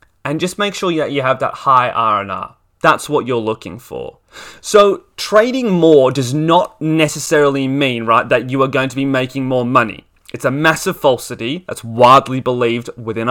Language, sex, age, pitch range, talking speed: English, male, 20-39, 120-160 Hz, 180 wpm